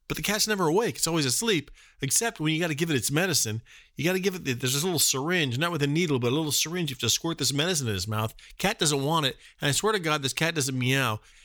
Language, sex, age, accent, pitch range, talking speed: English, male, 40-59, American, 120-160 Hz, 295 wpm